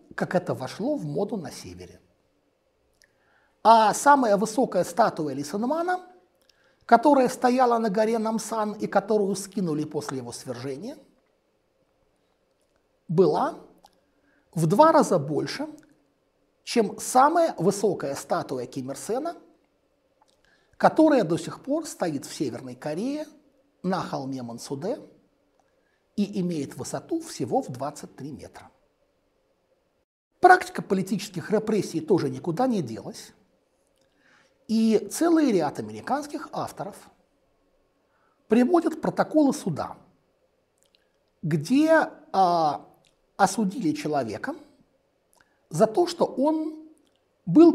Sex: male